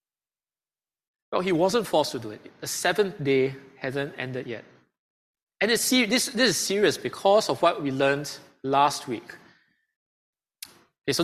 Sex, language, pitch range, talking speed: male, English, 125-170 Hz, 140 wpm